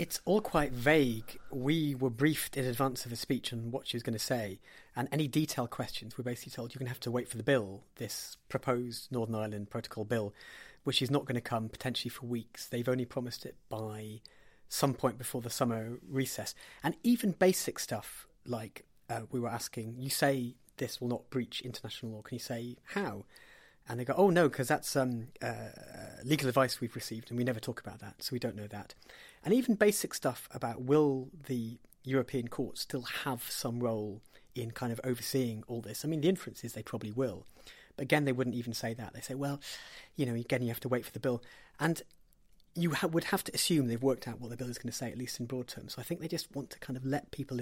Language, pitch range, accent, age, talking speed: English, 120-140 Hz, British, 30-49, 235 wpm